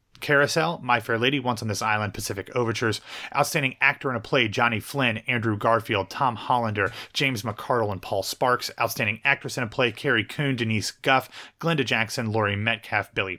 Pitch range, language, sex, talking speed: 110-135 Hz, English, male, 180 wpm